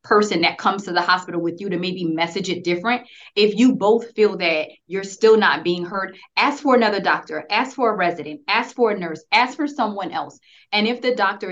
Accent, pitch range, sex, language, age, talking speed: American, 175-220 Hz, female, English, 20-39, 225 wpm